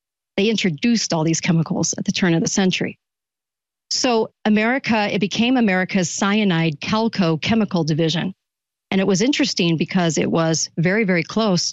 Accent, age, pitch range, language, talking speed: American, 40-59, 175-205 Hz, English, 155 wpm